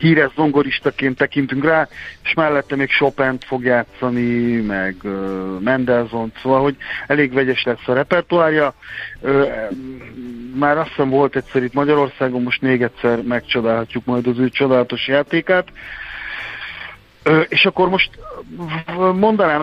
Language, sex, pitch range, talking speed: Hungarian, male, 125-155 Hz, 115 wpm